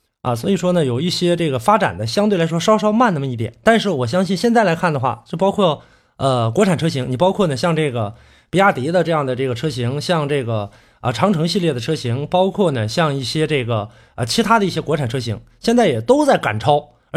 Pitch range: 125-205 Hz